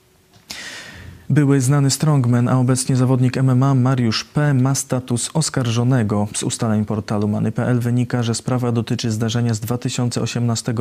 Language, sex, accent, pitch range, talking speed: Polish, male, native, 110-130 Hz, 130 wpm